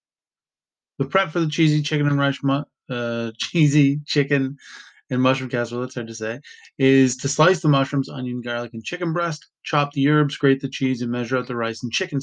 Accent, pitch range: American, 130-155 Hz